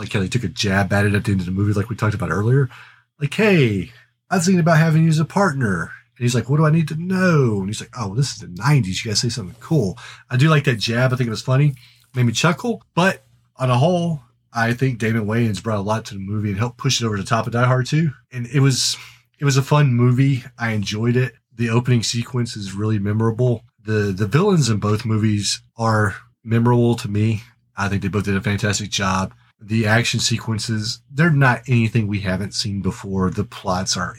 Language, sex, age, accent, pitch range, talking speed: English, male, 30-49, American, 100-125 Hz, 240 wpm